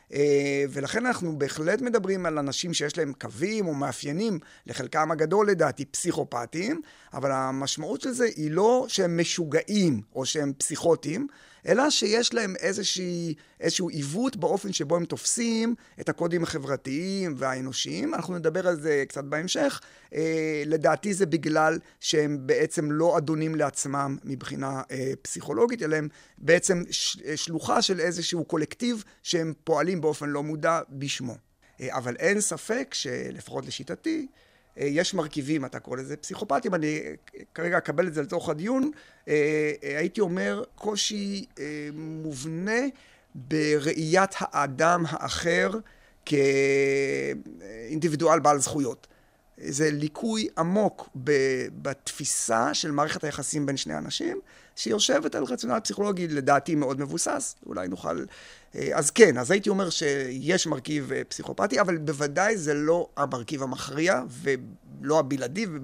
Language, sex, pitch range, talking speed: Hebrew, male, 145-185 Hz, 120 wpm